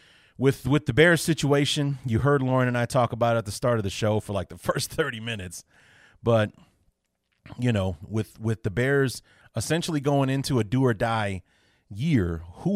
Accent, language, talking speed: American, English, 195 wpm